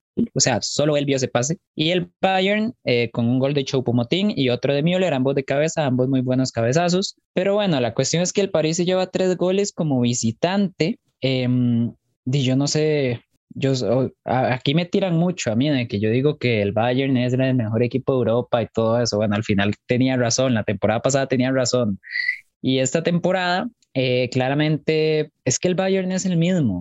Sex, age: male, 20-39